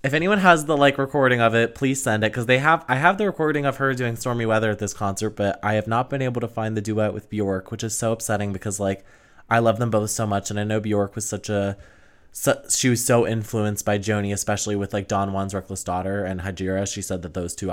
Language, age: English, 20-39